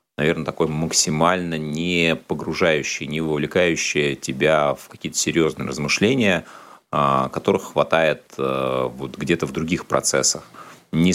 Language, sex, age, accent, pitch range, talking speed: Russian, male, 30-49, native, 75-95 Hz, 100 wpm